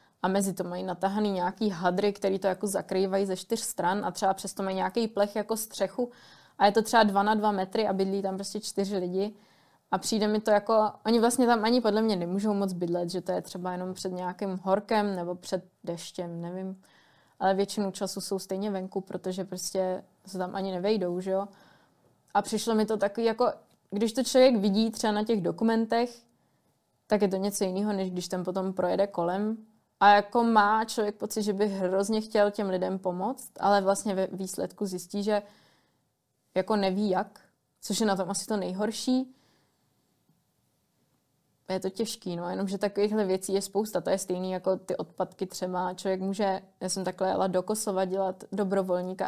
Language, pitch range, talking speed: Czech, 185-210 Hz, 190 wpm